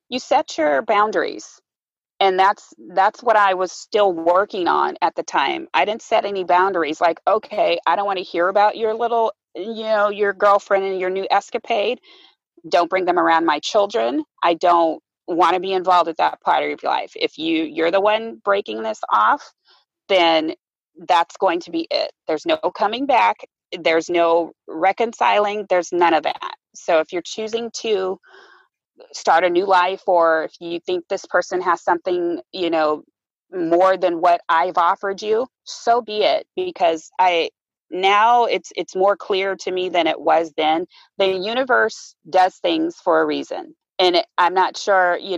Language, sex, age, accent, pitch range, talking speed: English, female, 30-49, American, 170-225 Hz, 180 wpm